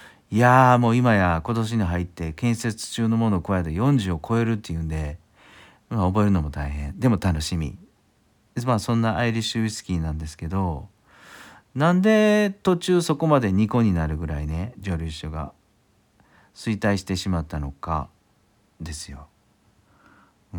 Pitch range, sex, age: 85-110 Hz, male, 40-59